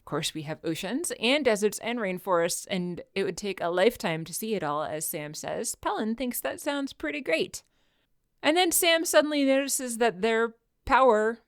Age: 30-49